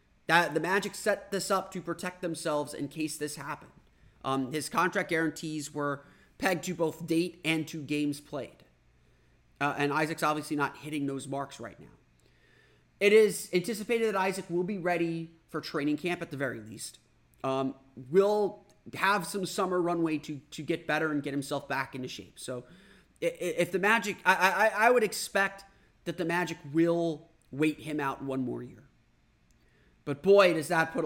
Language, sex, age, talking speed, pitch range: English, male, 30-49, 175 wpm, 135-180 Hz